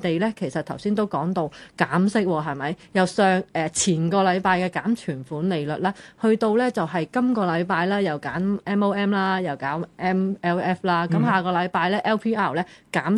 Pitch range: 170-220 Hz